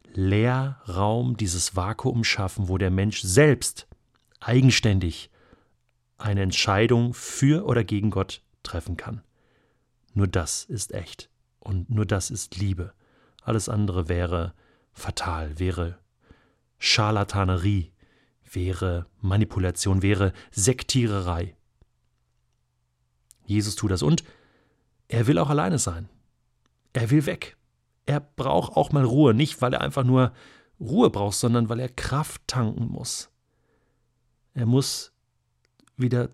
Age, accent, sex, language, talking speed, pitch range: 40-59, German, male, German, 115 wpm, 95-125 Hz